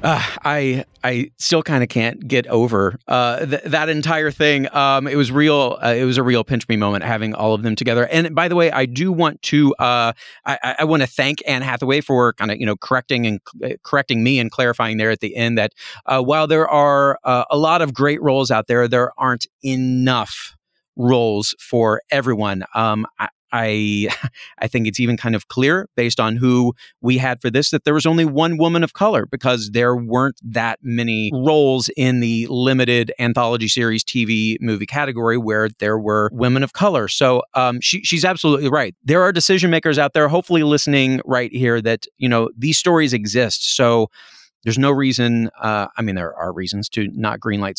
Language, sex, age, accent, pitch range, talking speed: English, male, 30-49, American, 115-145 Hz, 205 wpm